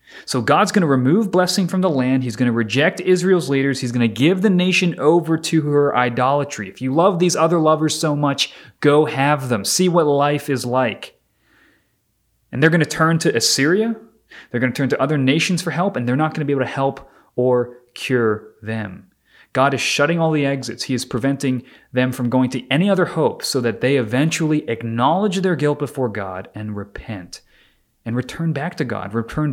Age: 30-49